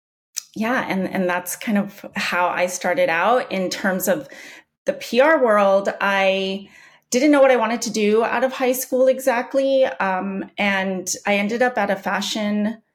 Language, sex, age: English, female, 30-49